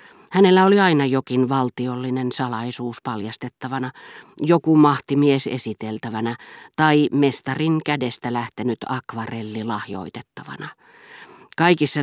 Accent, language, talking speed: native, Finnish, 85 wpm